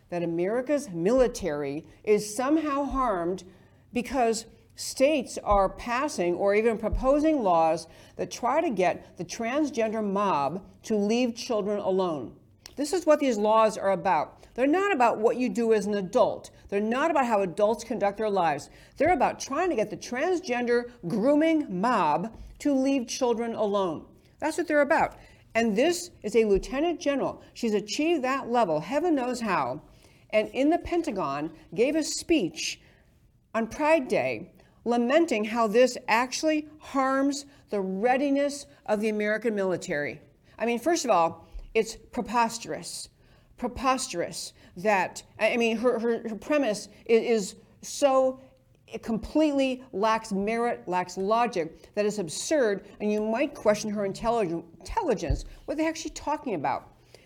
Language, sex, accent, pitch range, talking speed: English, female, American, 205-280 Hz, 145 wpm